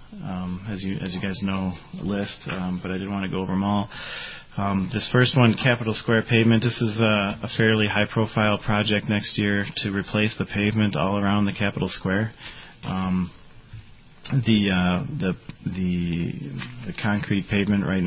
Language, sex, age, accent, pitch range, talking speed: English, male, 30-49, American, 95-105 Hz, 175 wpm